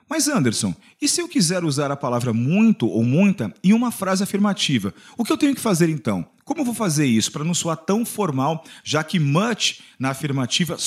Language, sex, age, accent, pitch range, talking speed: English, male, 40-59, Brazilian, 140-210 Hz, 210 wpm